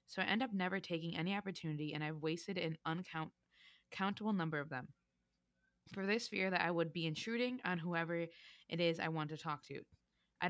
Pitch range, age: 155-185 Hz, 20-39